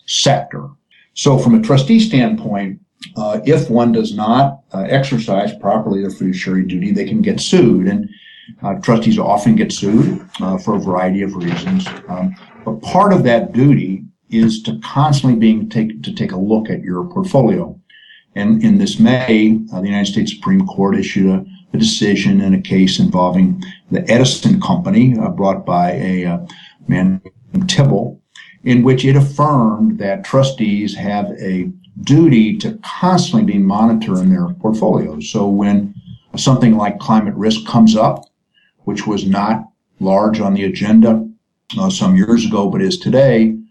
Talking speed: 160 wpm